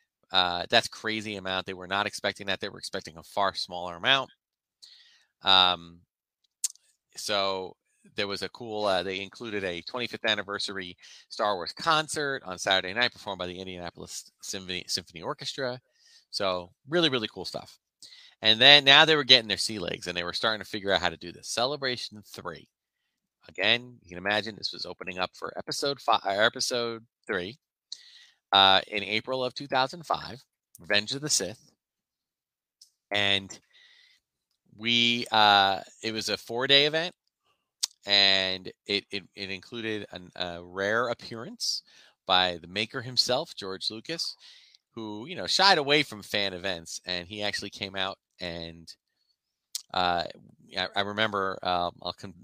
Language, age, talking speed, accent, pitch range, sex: English, 30-49, 150 wpm, American, 95-125 Hz, male